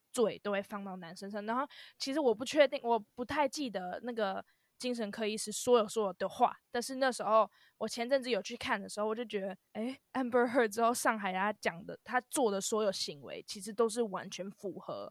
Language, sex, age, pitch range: Chinese, female, 20-39, 200-245 Hz